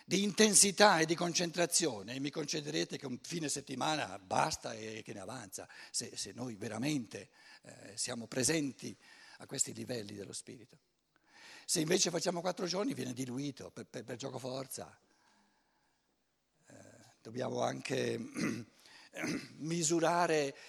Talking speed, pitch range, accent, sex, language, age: 130 wpm, 130-180 Hz, native, male, Italian, 60-79